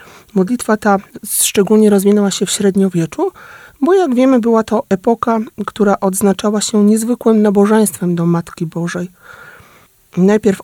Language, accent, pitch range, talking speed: Polish, native, 190-235 Hz, 125 wpm